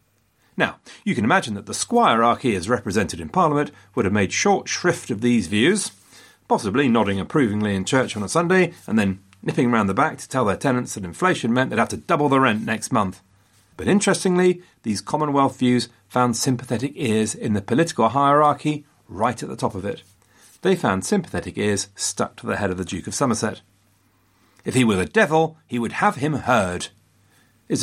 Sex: male